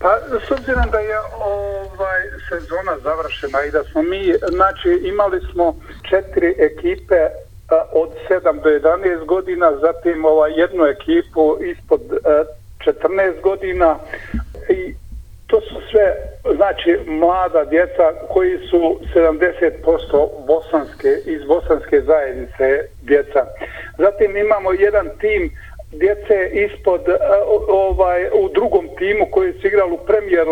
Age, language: 50-69, Croatian